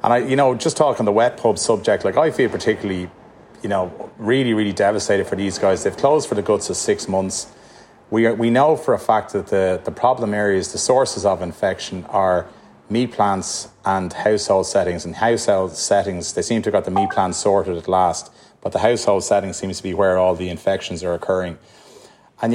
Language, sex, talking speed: English, male, 215 wpm